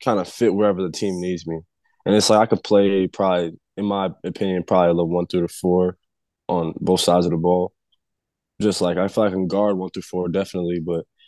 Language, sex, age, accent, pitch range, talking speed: English, male, 20-39, American, 90-100 Hz, 235 wpm